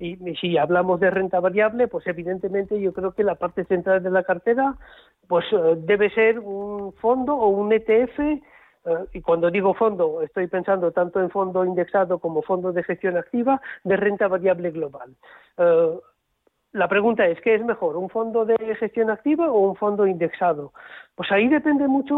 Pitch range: 180-220 Hz